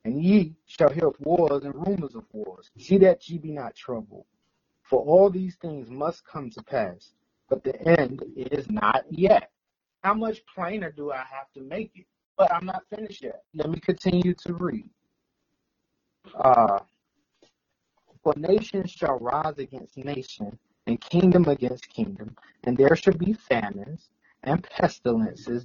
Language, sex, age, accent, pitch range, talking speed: English, male, 30-49, American, 140-195 Hz, 155 wpm